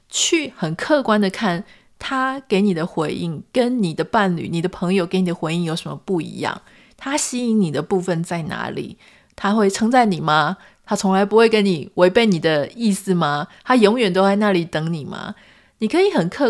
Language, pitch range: Chinese, 175-230 Hz